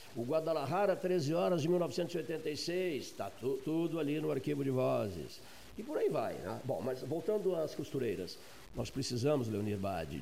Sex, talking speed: male, 165 wpm